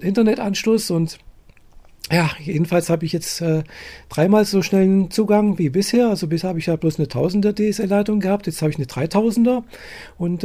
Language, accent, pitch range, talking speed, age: German, German, 155-190 Hz, 180 wpm, 40-59